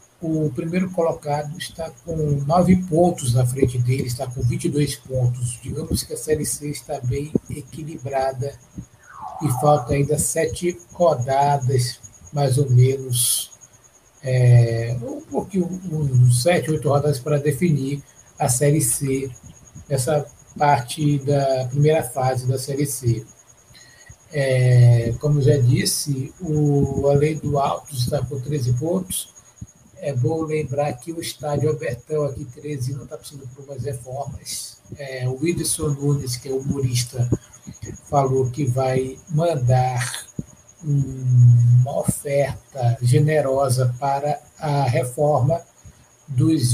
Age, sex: 60-79, male